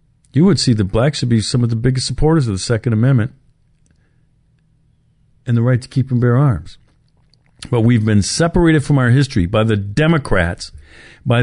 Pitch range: 95-135 Hz